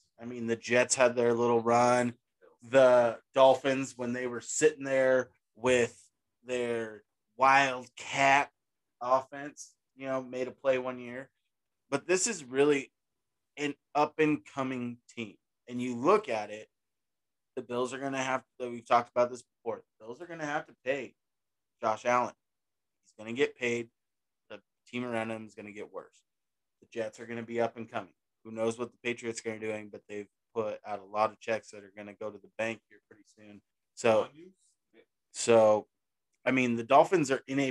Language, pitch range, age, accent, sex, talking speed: English, 110-130 Hz, 20-39, American, male, 190 wpm